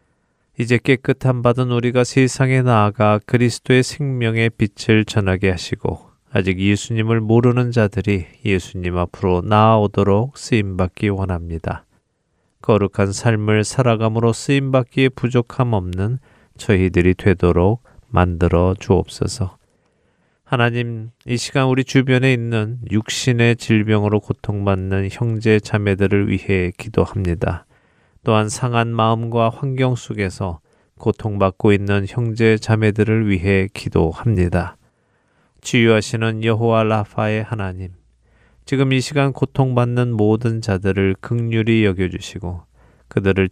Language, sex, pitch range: Korean, male, 95-120 Hz